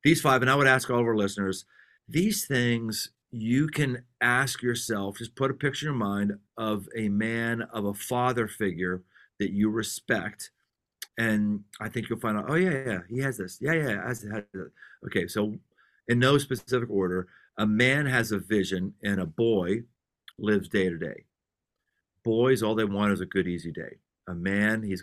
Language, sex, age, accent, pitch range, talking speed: English, male, 40-59, American, 100-125 Hz, 190 wpm